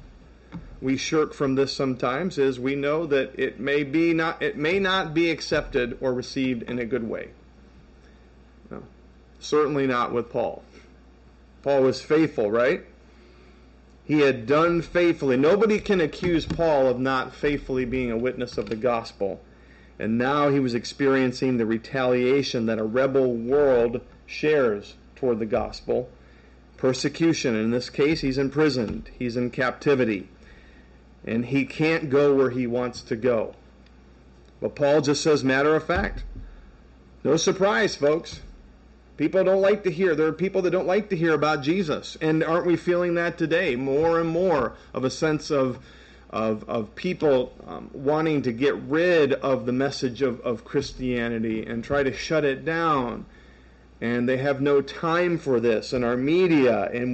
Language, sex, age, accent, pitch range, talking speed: English, male, 40-59, American, 110-155 Hz, 160 wpm